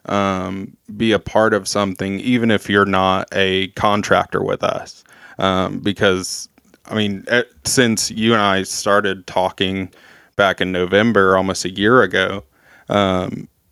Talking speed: 145 wpm